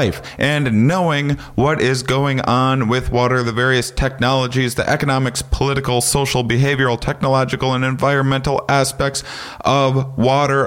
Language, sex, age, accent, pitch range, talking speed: English, male, 40-59, American, 95-130 Hz, 125 wpm